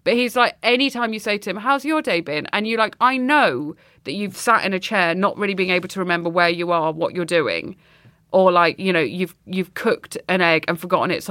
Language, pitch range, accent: English, 170-240 Hz, British